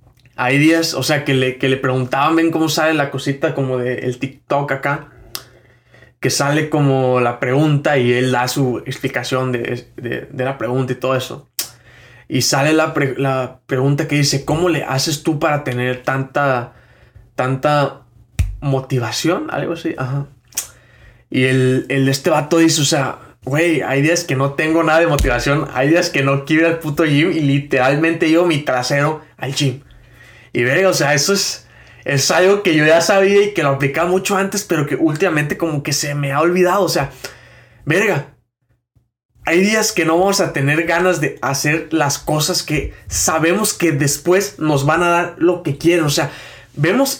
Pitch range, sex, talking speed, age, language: 130-170 Hz, male, 185 wpm, 20-39, Spanish